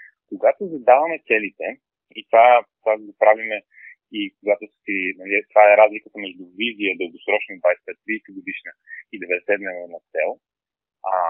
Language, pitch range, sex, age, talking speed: Bulgarian, 105-165 Hz, male, 30-49, 120 wpm